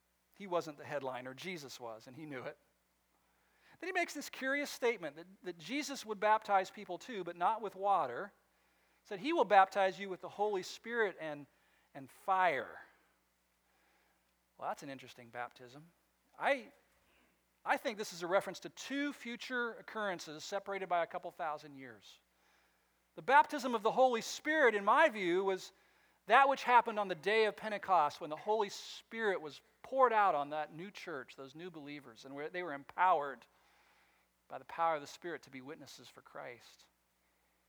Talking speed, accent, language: 175 wpm, American, English